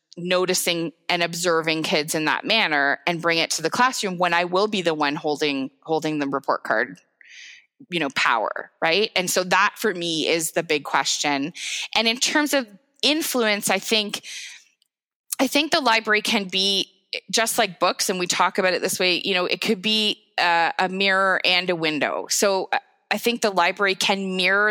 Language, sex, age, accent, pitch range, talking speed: English, female, 20-39, American, 170-210 Hz, 190 wpm